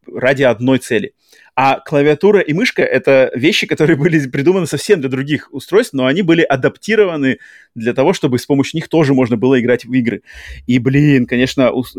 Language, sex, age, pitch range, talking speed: Russian, male, 20-39, 115-145 Hz, 180 wpm